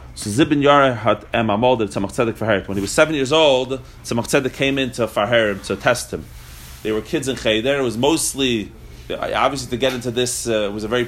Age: 30-49